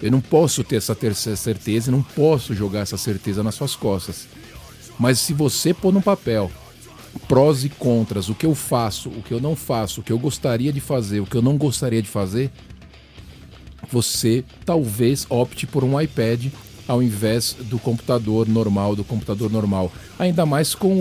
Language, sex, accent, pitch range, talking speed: Portuguese, male, Brazilian, 110-135 Hz, 185 wpm